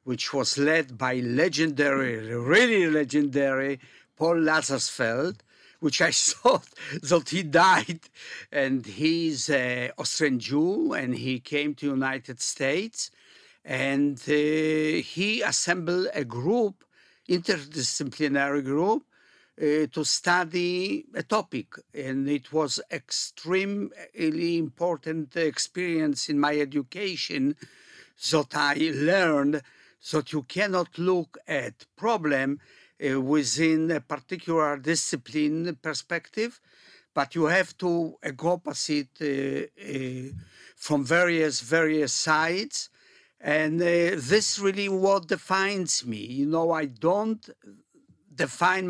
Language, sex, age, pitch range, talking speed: Hebrew, male, 60-79, 140-175 Hz, 110 wpm